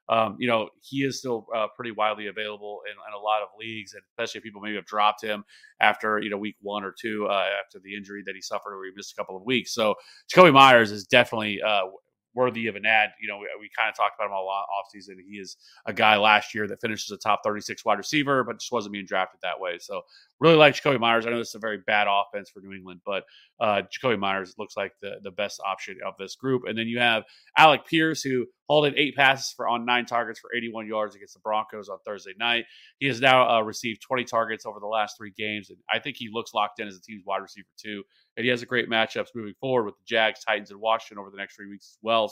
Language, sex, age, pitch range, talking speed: English, male, 30-49, 105-125 Hz, 265 wpm